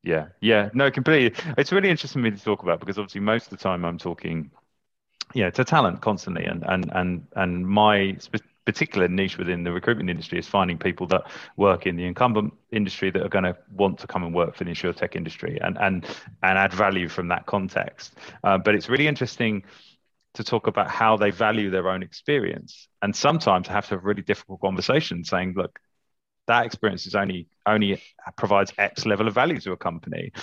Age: 30-49